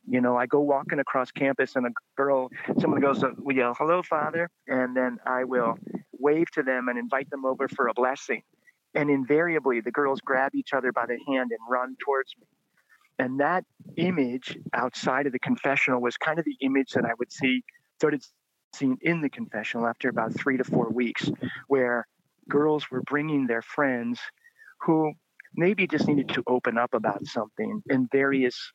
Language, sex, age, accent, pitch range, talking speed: English, male, 40-59, American, 125-150 Hz, 185 wpm